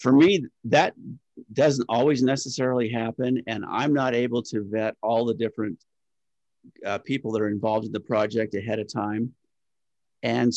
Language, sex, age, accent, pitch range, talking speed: English, male, 50-69, American, 105-120 Hz, 160 wpm